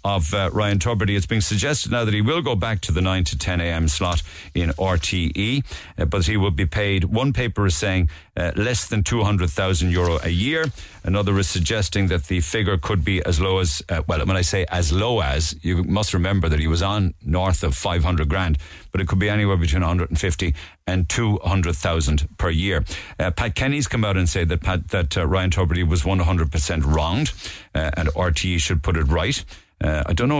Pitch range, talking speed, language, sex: 85-105 Hz, 230 wpm, English, male